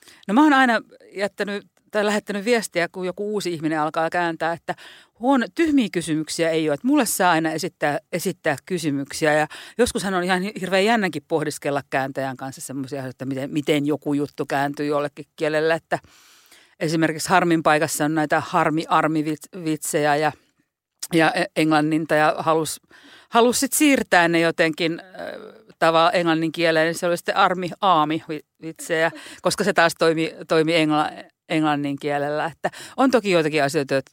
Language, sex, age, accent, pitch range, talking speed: Finnish, female, 50-69, native, 150-190 Hz, 140 wpm